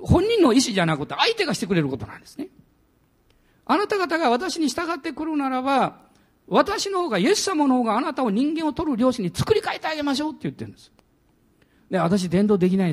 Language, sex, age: Japanese, male, 50-69